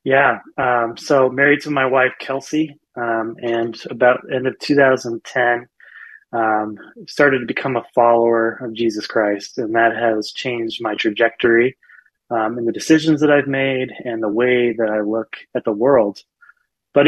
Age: 20-39